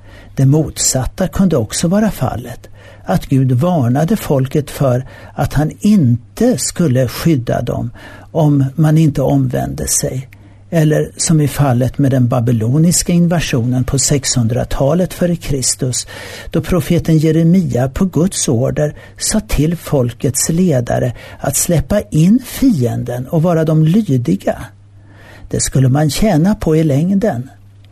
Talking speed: 125 wpm